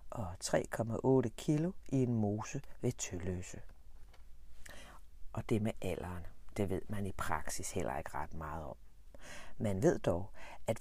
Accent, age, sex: native, 60-79, female